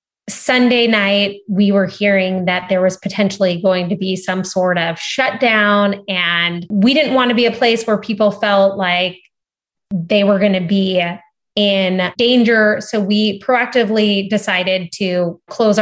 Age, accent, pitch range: 20-39, American, 180-210 Hz